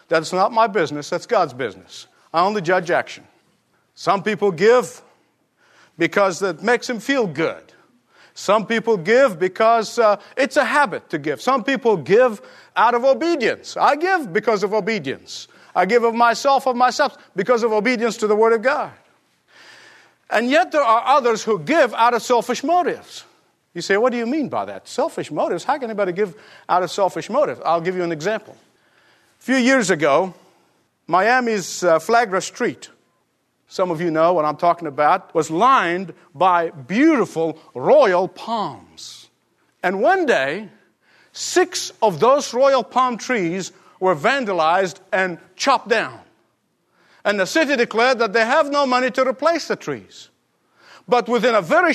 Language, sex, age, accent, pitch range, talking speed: English, male, 50-69, American, 185-255 Hz, 165 wpm